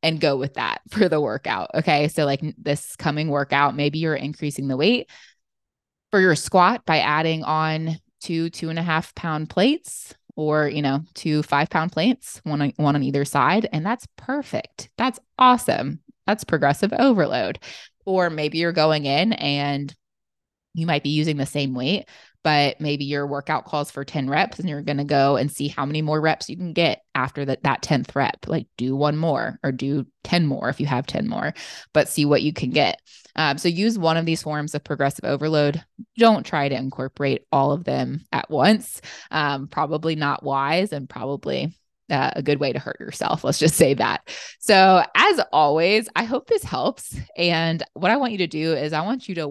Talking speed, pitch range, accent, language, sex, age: 200 wpm, 145-175 Hz, American, English, female, 20-39